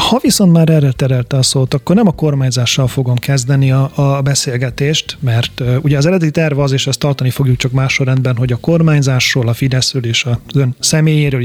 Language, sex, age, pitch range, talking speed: Hungarian, male, 30-49, 125-150 Hz, 195 wpm